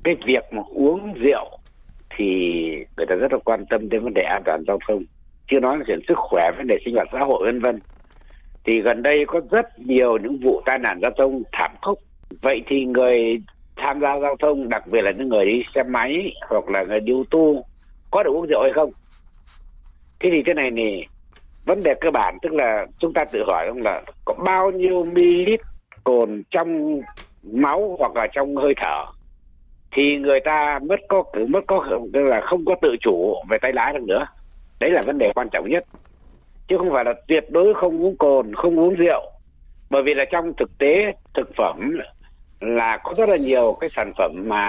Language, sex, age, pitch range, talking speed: Vietnamese, male, 60-79, 100-160 Hz, 210 wpm